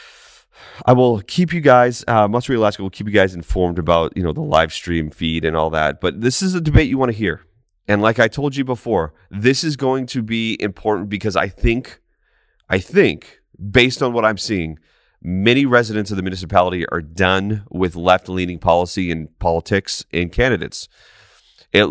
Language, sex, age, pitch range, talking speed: English, male, 30-49, 85-115 Hz, 190 wpm